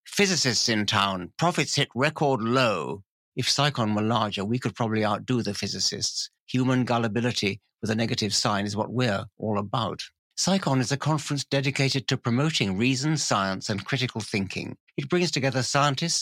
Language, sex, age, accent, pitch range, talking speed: English, male, 60-79, British, 110-140 Hz, 165 wpm